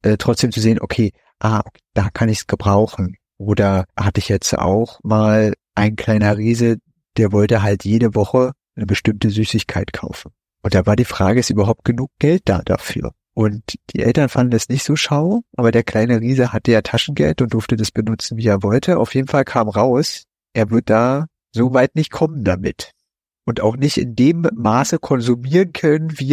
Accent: German